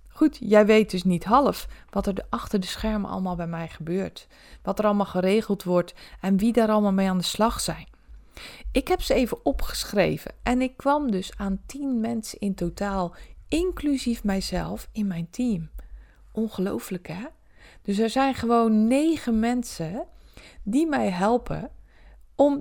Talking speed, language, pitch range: 160 wpm, Dutch, 195-245 Hz